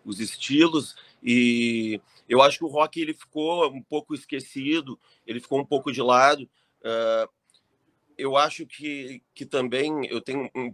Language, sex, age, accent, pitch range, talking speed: Portuguese, male, 30-49, Brazilian, 115-140 Hz, 150 wpm